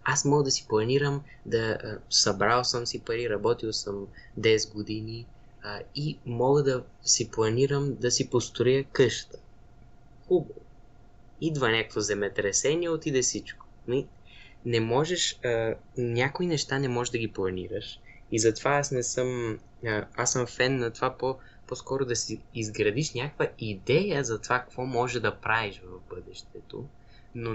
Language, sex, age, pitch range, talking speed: Bulgarian, male, 20-39, 110-130 Hz, 140 wpm